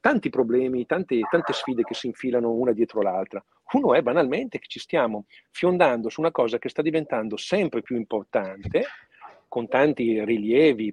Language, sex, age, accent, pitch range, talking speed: Italian, male, 40-59, native, 110-145 Hz, 165 wpm